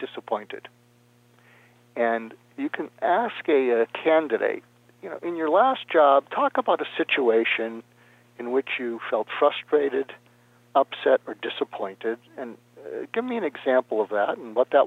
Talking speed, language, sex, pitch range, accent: 150 wpm, English, male, 115-155 Hz, American